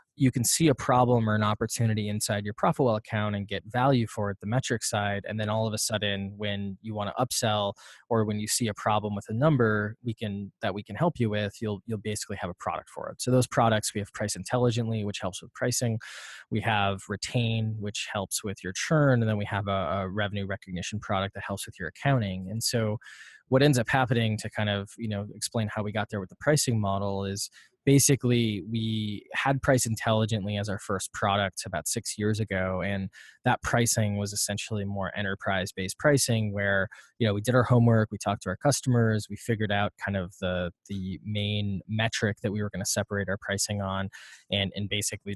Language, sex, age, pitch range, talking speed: English, male, 20-39, 100-115 Hz, 220 wpm